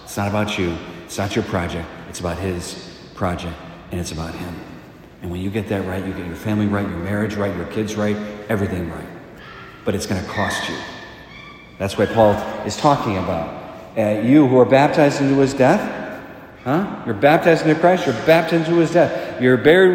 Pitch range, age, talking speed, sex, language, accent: 105-170 Hz, 50-69, 200 wpm, male, English, American